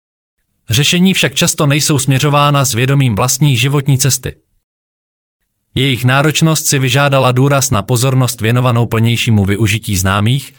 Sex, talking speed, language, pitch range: male, 120 wpm, Czech, 115-150 Hz